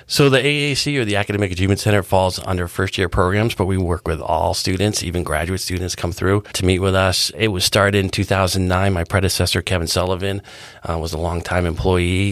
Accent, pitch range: American, 85-105 Hz